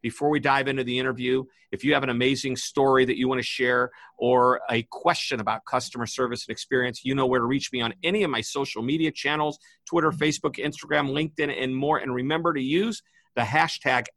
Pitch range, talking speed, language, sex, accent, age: 125-170 Hz, 210 wpm, English, male, American, 50-69